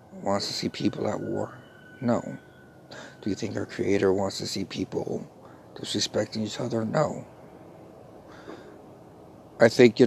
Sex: male